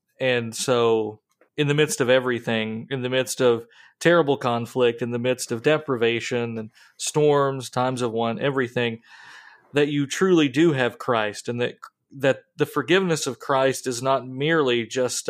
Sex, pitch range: male, 120-145 Hz